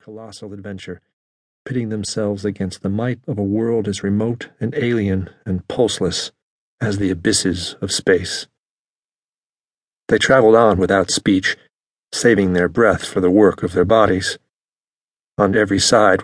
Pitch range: 95-105 Hz